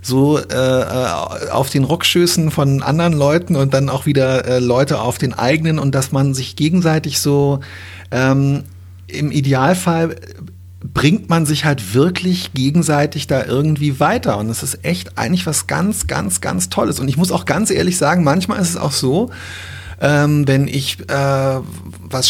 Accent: German